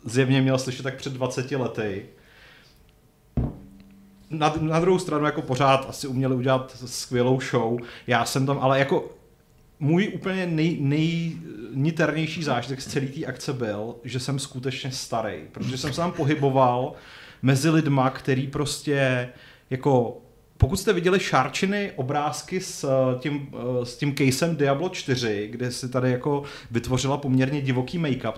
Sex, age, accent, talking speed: male, 30-49, native, 140 wpm